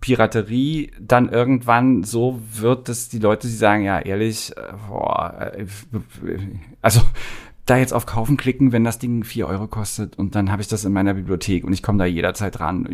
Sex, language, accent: male, German, German